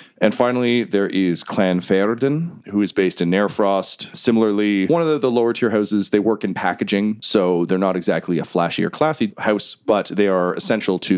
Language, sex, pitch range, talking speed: English, male, 90-110 Hz, 200 wpm